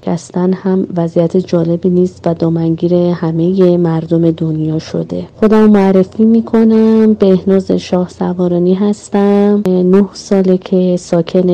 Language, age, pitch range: Persian, 30-49, 180-205 Hz